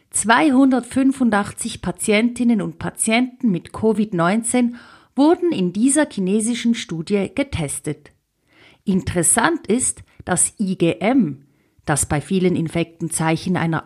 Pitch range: 175-255 Hz